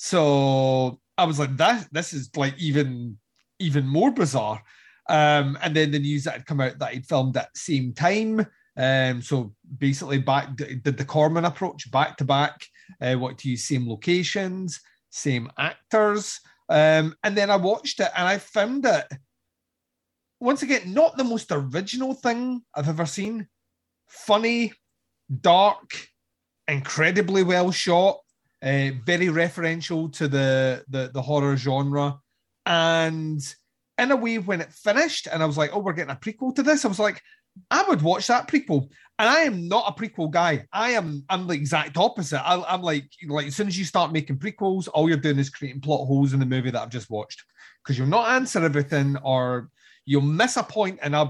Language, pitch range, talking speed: English, 135-195 Hz, 185 wpm